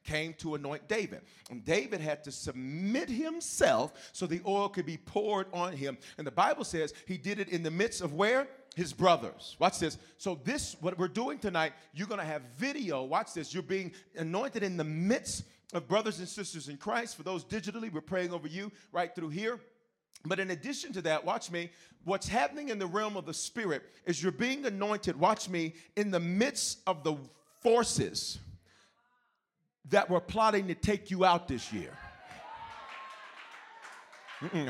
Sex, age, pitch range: male, 40-59, 165-225 Hz